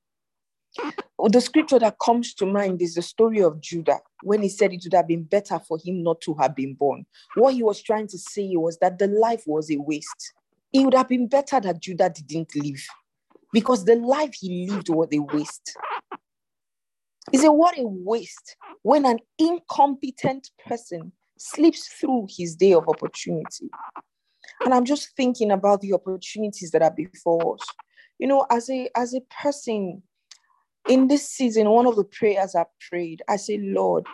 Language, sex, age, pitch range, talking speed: English, female, 40-59, 175-255 Hz, 180 wpm